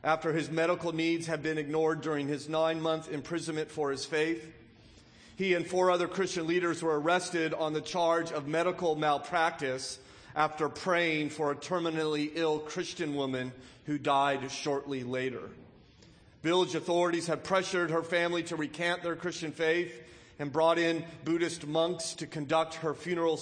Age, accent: 40-59, American